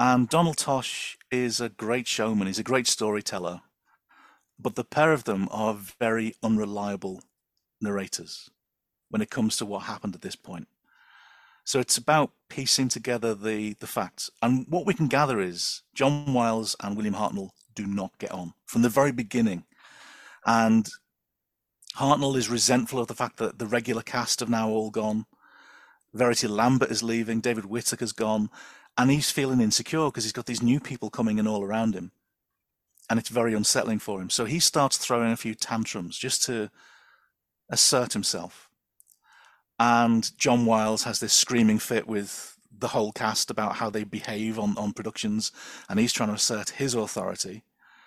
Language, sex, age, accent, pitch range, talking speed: English, male, 40-59, British, 105-125 Hz, 170 wpm